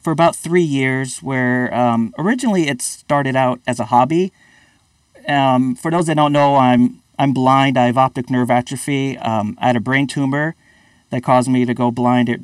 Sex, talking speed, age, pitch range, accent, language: male, 190 wpm, 40-59, 125-160 Hz, American, English